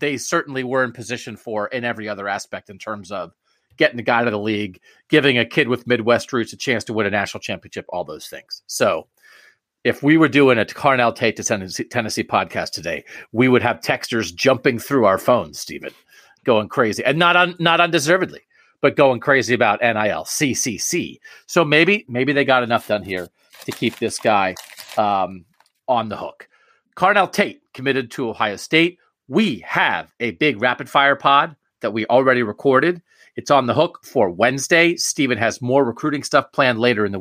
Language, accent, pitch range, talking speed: English, American, 115-155 Hz, 190 wpm